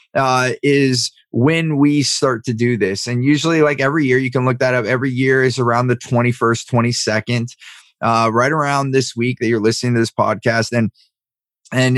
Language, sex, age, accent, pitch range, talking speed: English, male, 20-39, American, 115-135 Hz, 190 wpm